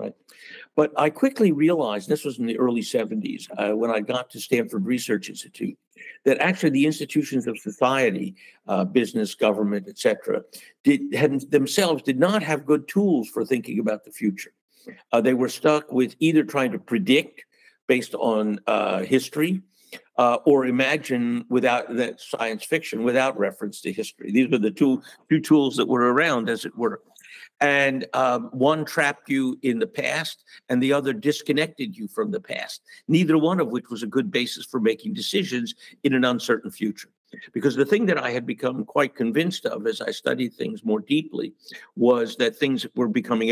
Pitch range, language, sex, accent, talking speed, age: 120-175 Hz, English, male, American, 175 wpm, 60-79